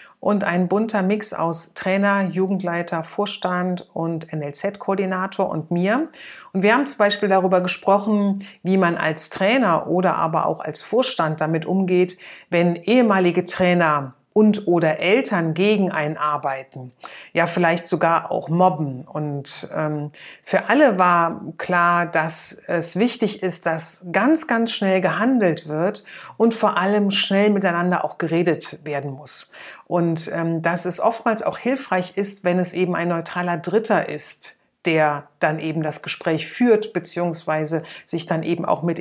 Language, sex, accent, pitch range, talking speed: German, female, German, 165-200 Hz, 145 wpm